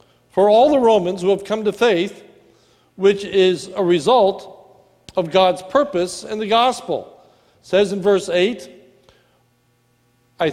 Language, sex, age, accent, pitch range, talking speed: English, male, 60-79, American, 180-220 Hz, 140 wpm